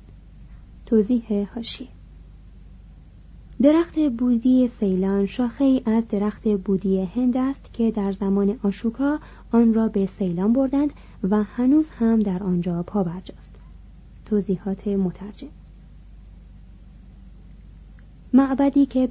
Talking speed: 95 wpm